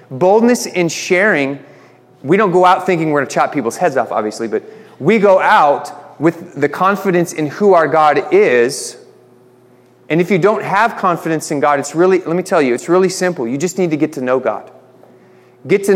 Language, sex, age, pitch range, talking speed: English, male, 30-49, 135-185 Hz, 205 wpm